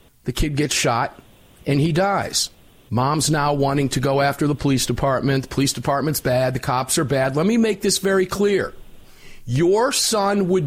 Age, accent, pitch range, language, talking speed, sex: 50-69, American, 135-200 Hz, English, 185 wpm, male